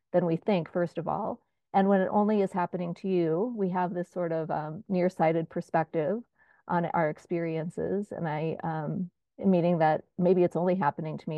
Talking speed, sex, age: 190 wpm, female, 40-59